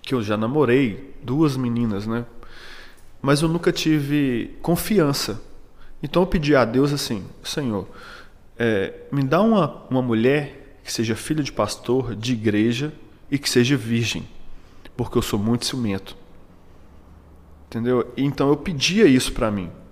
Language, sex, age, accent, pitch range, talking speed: Portuguese, male, 20-39, Brazilian, 110-135 Hz, 145 wpm